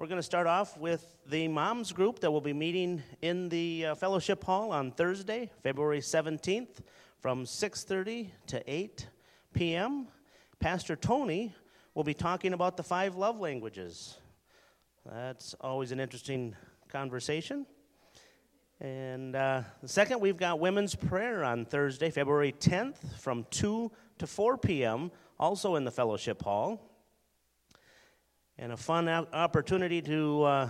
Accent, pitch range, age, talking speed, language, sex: American, 145-200 Hz, 40-59, 140 wpm, English, male